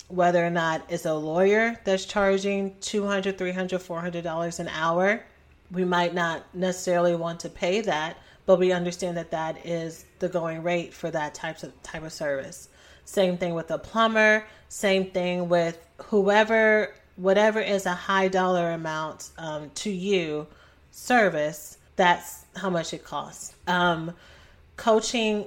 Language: English